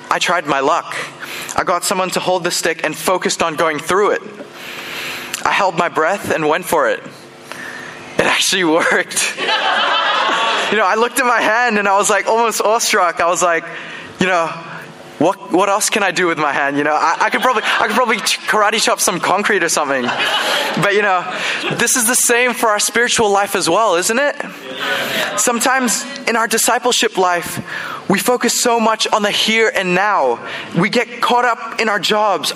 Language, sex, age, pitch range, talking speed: English, male, 20-39, 180-225 Hz, 195 wpm